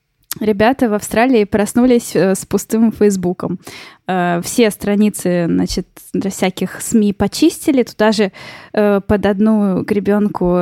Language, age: Russian, 10-29